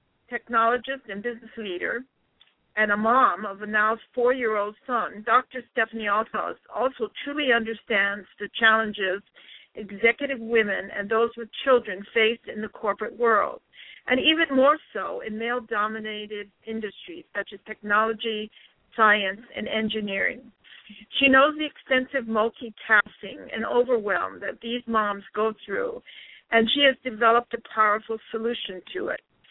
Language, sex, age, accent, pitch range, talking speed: English, female, 60-79, American, 215-255 Hz, 140 wpm